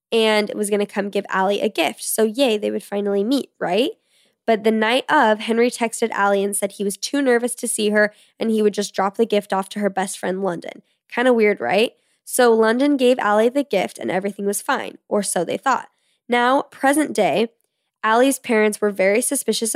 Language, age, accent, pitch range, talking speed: English, 10-29, American, 205-250 Hz, 215 wpm